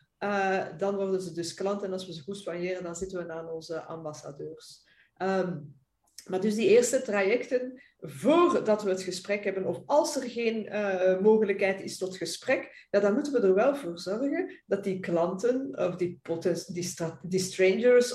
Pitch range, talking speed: 185-235 Hz, 185 wpm